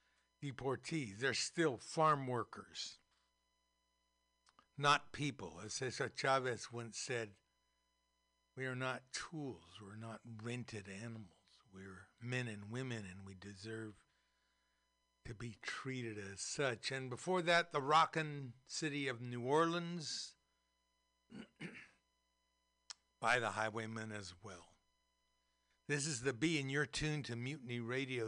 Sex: male